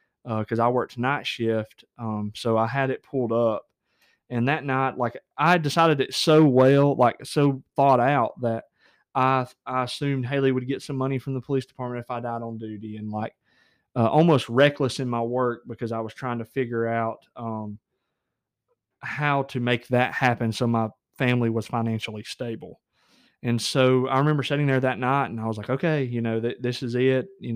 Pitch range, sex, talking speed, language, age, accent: 115-130 Hz, male, 200 wpm, English, 20-39, American